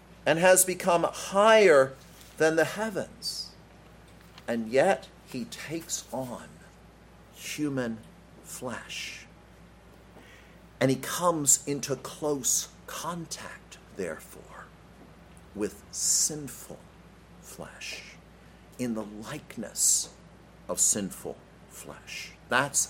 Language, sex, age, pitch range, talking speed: English, male, 50-69, 105-175 Hz, 80 wpm